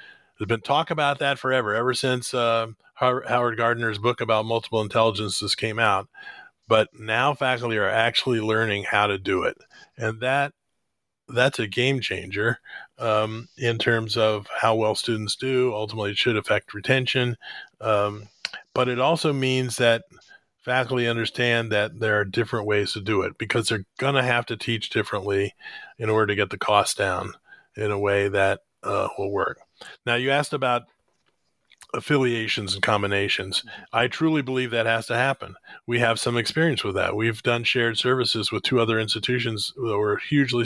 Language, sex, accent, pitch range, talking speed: English, male, American, 110-130 Hz, 170 wpm